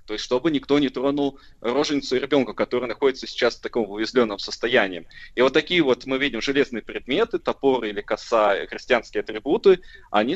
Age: 20-39